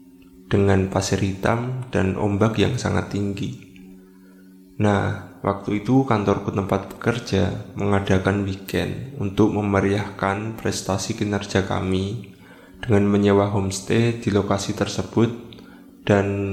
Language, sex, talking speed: Indonesian, male, 100 wpm